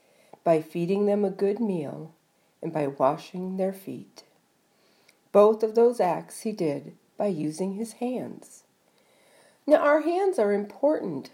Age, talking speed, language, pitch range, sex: 50-69, 140 wpm, English, 180-270 Hz, female